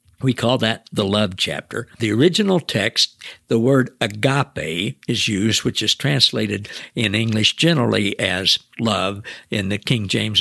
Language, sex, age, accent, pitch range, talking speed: English, male, 60-79, American, 105-140 Hz, 150 wpm